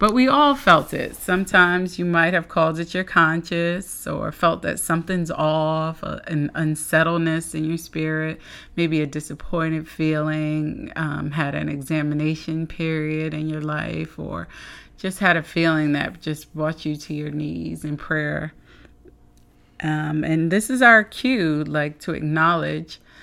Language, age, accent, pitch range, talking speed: English, 30-49, American, 150-170 Hz, 150 wpm